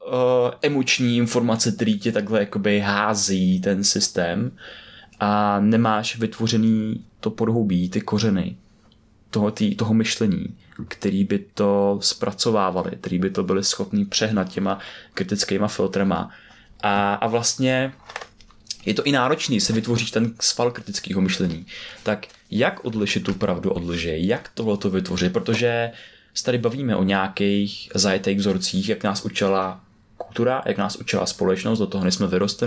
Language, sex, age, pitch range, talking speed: Czech, male, 20-39, 100-115 Hz, 135 wpm